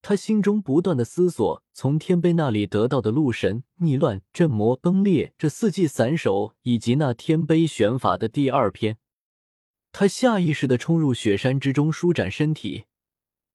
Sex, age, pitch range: male, 20-39, 115-170 Hz